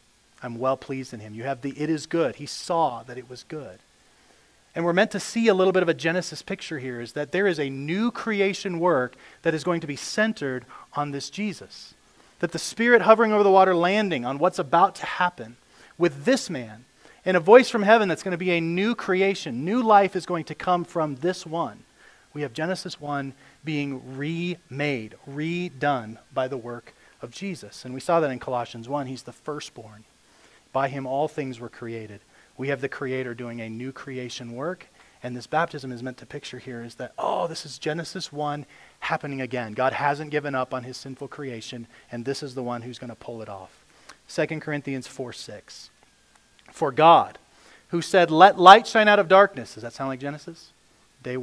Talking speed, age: 205 wpm, 40-59